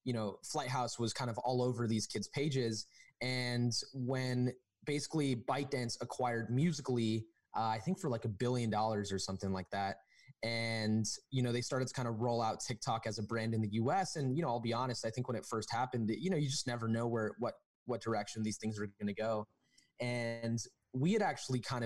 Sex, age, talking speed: male, 20-39, 215 wpm